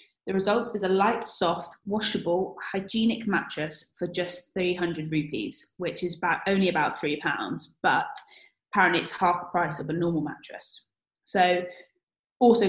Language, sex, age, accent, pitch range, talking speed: English, female, 10-29, British, 170-205 Hz, 150 wpm